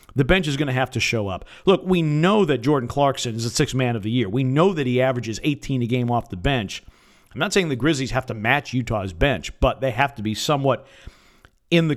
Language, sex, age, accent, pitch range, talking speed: English, male, 50-69, American, 120-145 Hz, 255 wpm